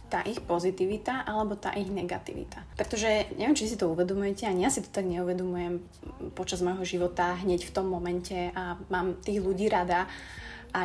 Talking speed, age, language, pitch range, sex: 175 wpm, 20-39, Slovak, 180-210 Hz, female